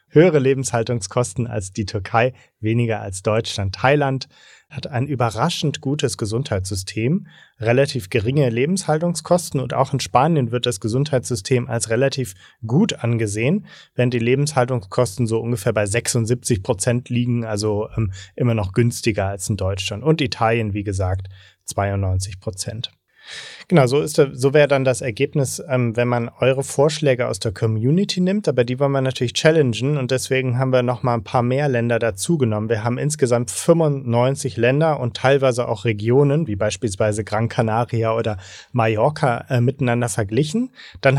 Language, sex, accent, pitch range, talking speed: German, male, German, 115-135 Hz, 150 wpm